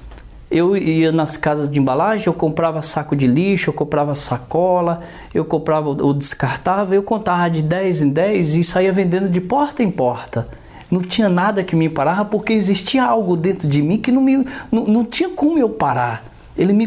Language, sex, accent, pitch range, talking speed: Portuguese, male, Brazilian, 140-180 Hz, 190 wpm